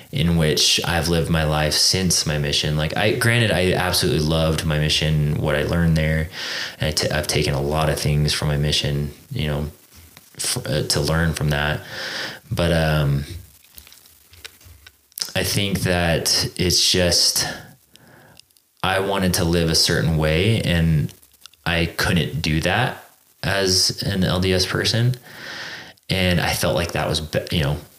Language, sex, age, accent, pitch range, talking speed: English, male, 20-39, American, 75-90 Hz, 150 wpm